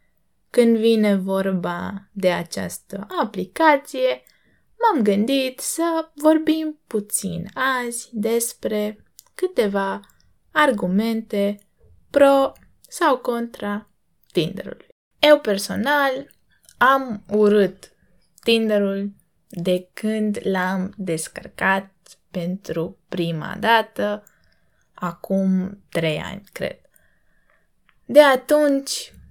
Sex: female